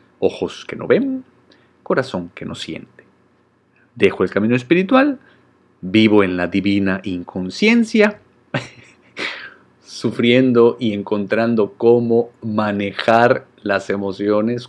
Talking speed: 100 wpm